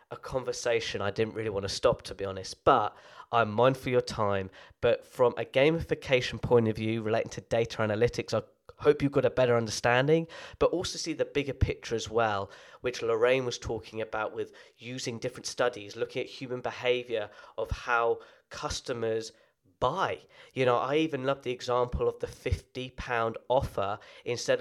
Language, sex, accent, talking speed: English, male, British, 175 wpm